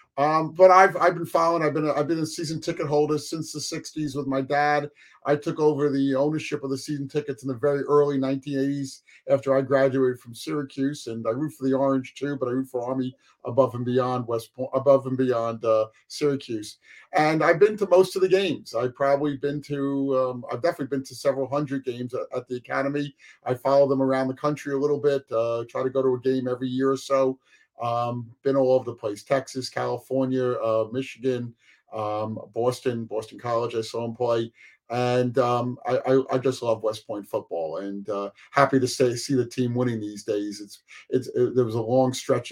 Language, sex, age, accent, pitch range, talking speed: English, male, 50-69, American, 120-145 Hz, 215 wpm